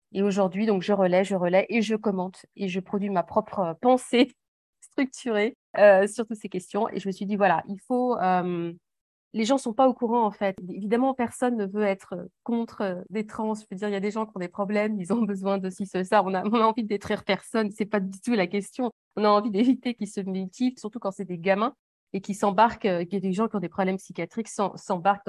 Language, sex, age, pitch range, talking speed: French, female, 30-49, 185-230 Hz, 250 wpm